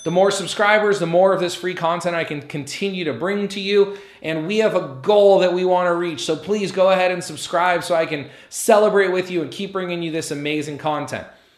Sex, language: male, English